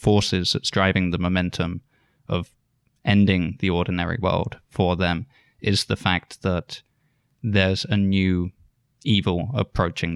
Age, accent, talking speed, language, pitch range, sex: 20-39, British, 125 wpm, English, 90-105 Hz, male